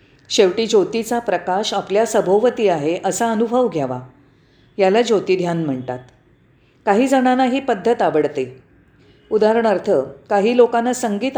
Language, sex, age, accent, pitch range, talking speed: Marathi, female, 40-59, native, 160-240 Hz, 100 wpm